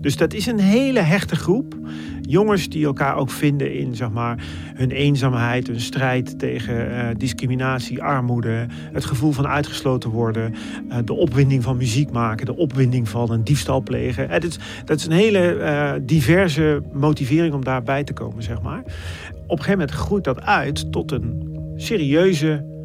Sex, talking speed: male, 160 wpm